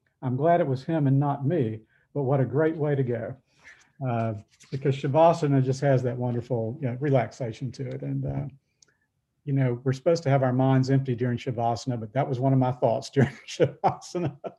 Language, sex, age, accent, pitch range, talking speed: English, male, 50-69, American, 125-145 Hz, 200 wpm